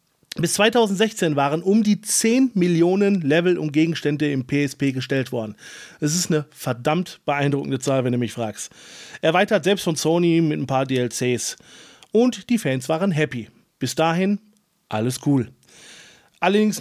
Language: German